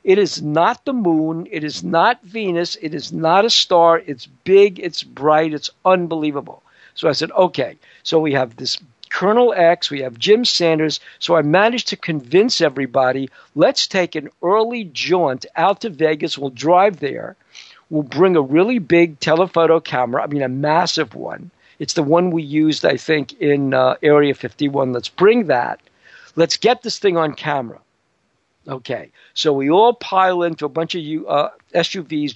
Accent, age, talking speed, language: American, 60-79, 175 wpm, English